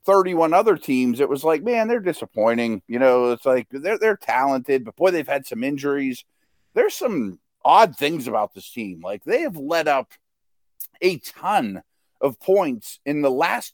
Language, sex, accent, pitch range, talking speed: English, male, American, 150-215 Hz, 180 wpm